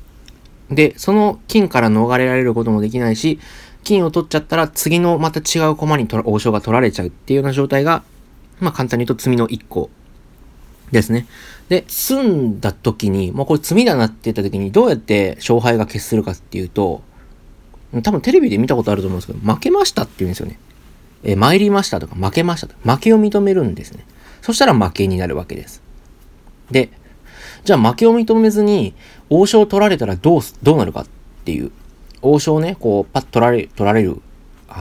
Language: Japanese